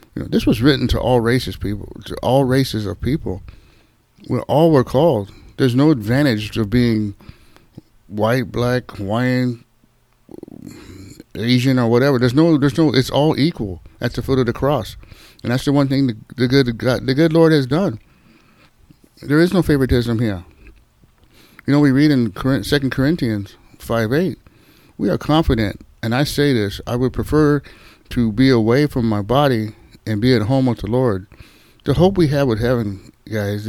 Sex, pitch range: male, 110-140 Hz